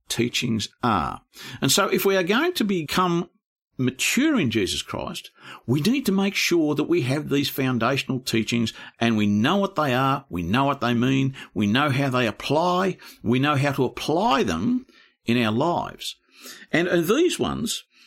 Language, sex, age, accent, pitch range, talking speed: English, male, 50-69, Australian, 115-170 Hz, 180 wpm